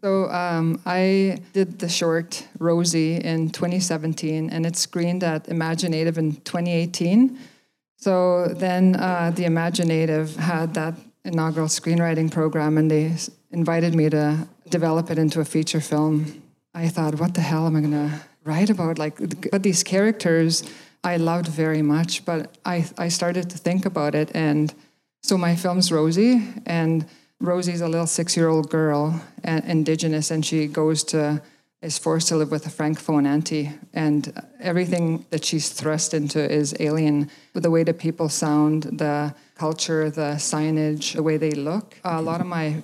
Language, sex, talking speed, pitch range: English, female, 160 wpm, 155-170 Hz